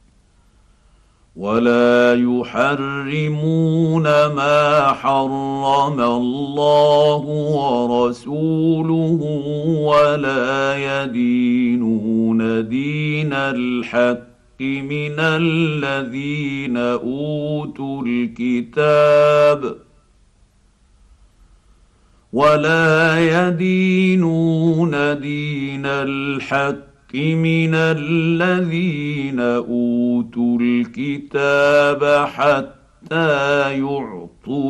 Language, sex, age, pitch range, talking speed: Arabic, male, 50-69, 120-150 Hz, 40 wpm